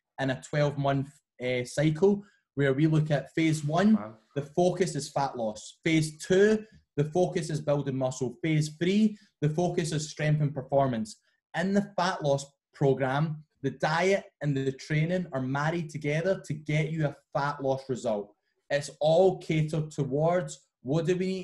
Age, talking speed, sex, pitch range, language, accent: 20-39, 170 wpm, male, 140-175 Hz, English, British